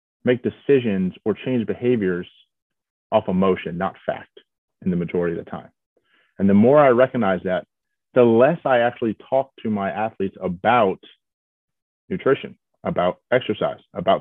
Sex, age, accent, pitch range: male, 30-49, American, 95-125 Hz